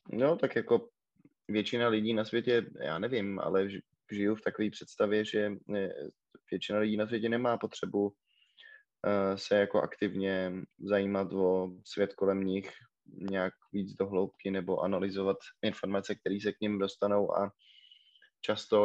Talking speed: 135 wpm